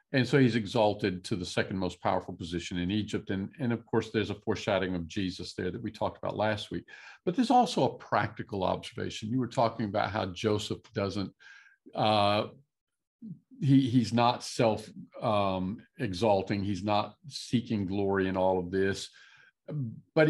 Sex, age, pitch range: male, 50-69, 95-125 Hz